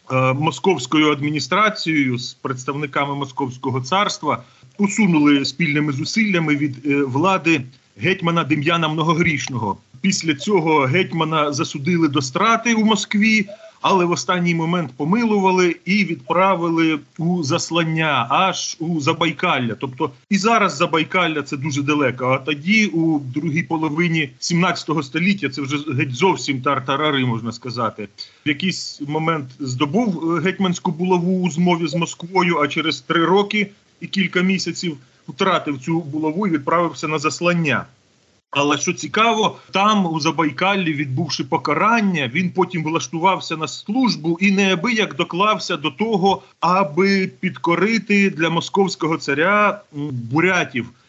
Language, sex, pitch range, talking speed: Ukrainian, male, 150-185 Hz, 120 wpm